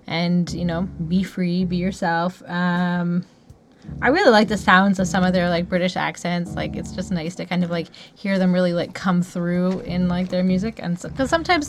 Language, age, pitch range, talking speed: English, 20-39, 175-200 Hz, 205 wpm